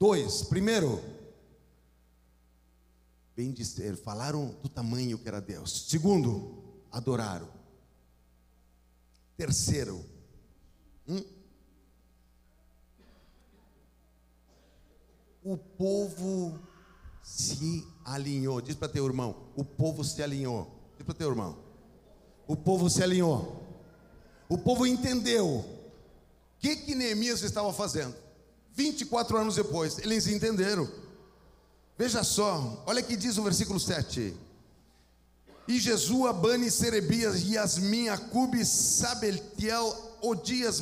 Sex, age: male, 50-69